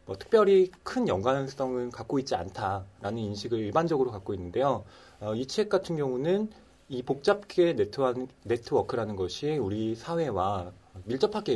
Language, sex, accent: Korean, male, native